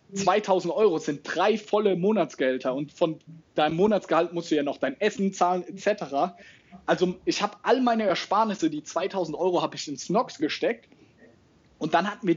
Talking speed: 175 wpm